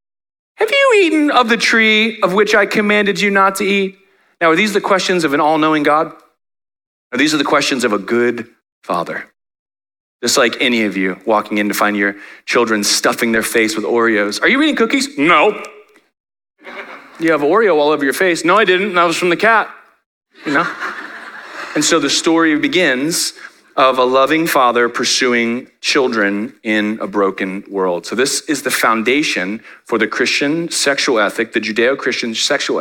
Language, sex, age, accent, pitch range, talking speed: English, male, 30-49, American, 115-180 Hz, 175 wpm